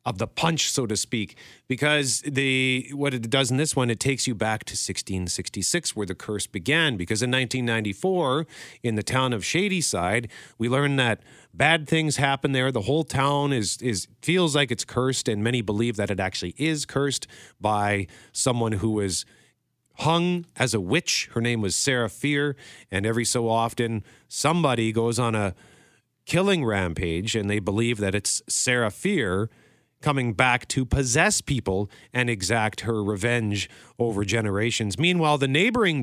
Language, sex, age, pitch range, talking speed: English, male, 40-59, 110-140 Hz, 165 wpm